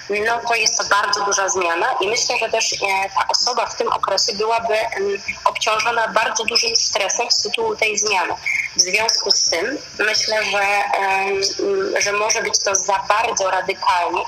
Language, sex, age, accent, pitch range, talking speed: Polish, female, 20-39, native, 190-225 Hz, 160 wpm